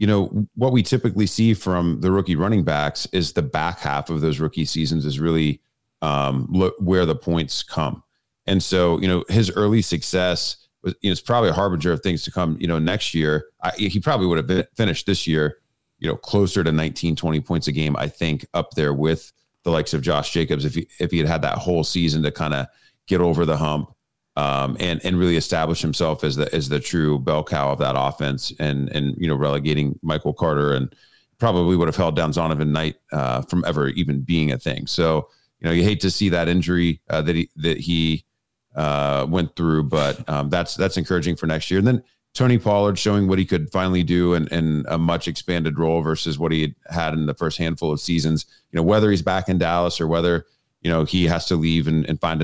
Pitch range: 75-90 Hz